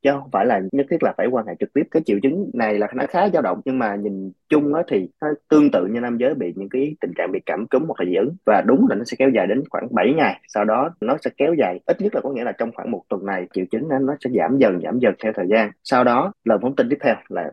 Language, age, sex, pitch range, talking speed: Vietnamese, 20-39, male, 105-140 Hz, 315 wpm